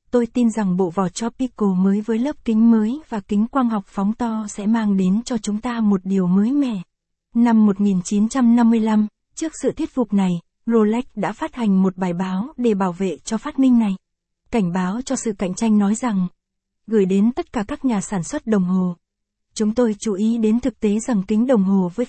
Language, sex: Vietnamese, female